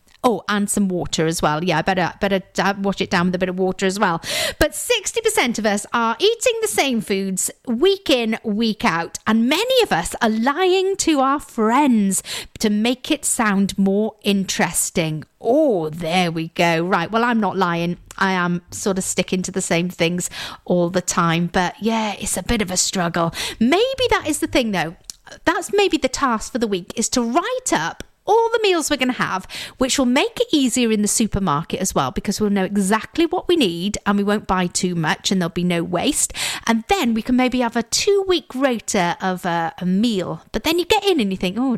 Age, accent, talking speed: 40-59, British, 215 wpm